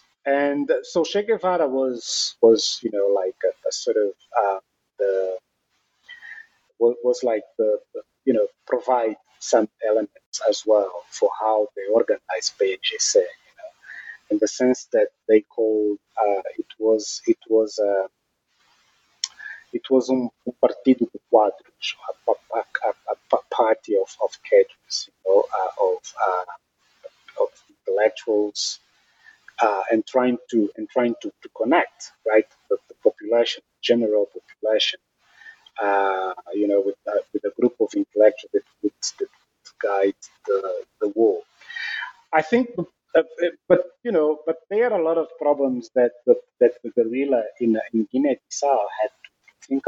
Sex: male